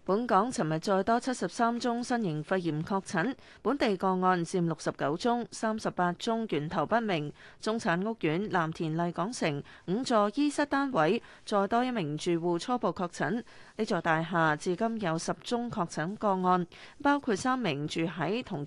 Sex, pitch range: female, 170-225 Hz